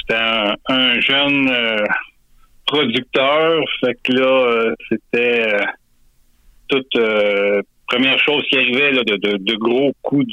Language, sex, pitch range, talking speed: French, male, 110-130 Hz, 140 wpm